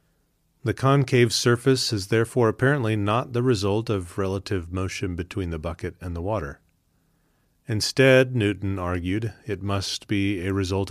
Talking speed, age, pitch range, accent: 145 wpm, 30-49, 85-105 Hz, American